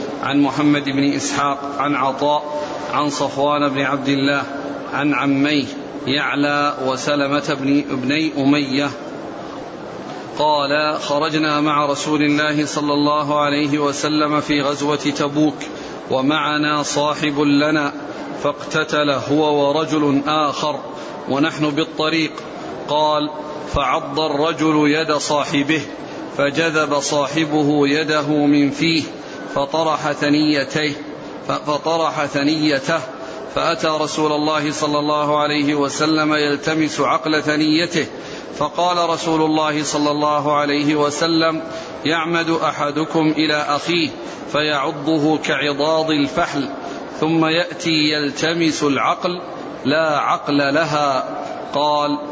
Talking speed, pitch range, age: 95 wpm, 145-155 Hz, 40-59